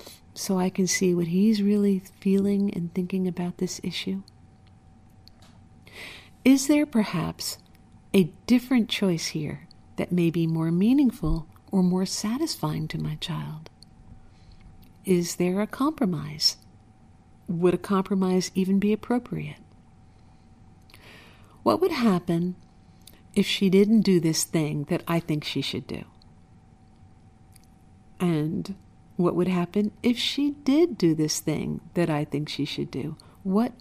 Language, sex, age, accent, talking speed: English, female, 50-69, American, 130 wpm